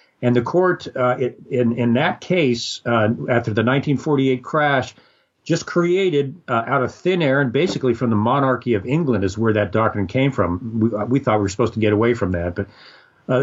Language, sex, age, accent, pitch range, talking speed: English, male, 50-69, American, 120-150 Hz, 210 wpm